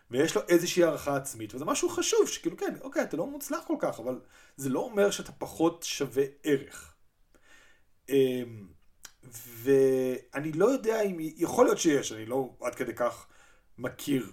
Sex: male